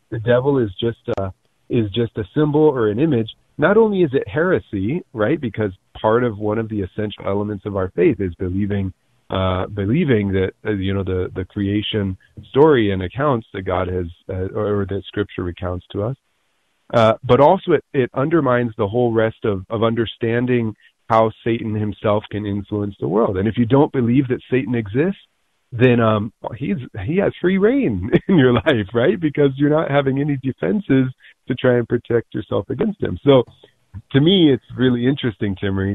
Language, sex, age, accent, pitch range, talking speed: English, male, 40-59, American, 100-130 Hz, 185 wpm